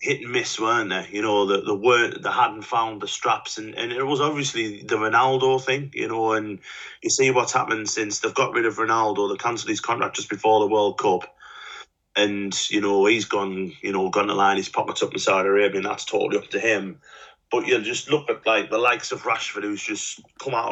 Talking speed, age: 235 wpm, 30-49